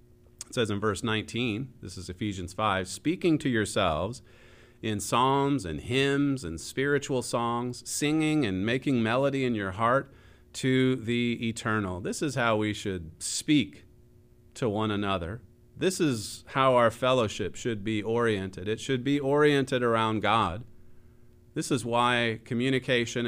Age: 40-59